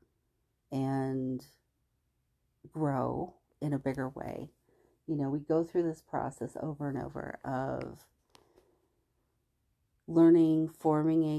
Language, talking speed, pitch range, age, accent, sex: English, 105 wpm, 135-160 Hz, 40-59, American, female